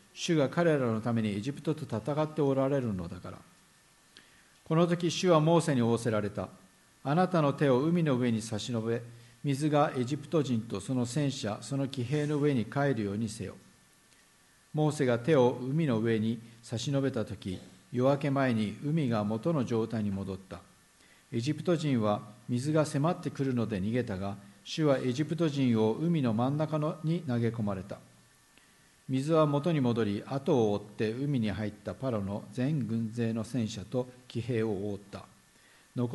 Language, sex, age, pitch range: Japanese, male, 50-69, 110-145 Hz